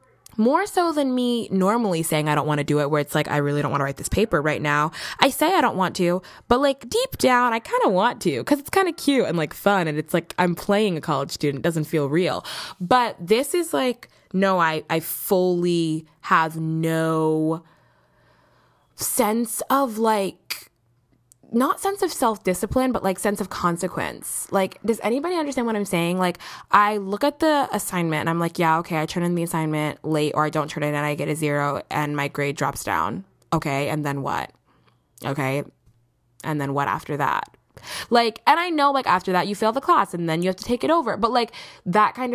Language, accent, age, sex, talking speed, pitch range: English, American, 20-39, female, 220 wpm, 150-225 Hz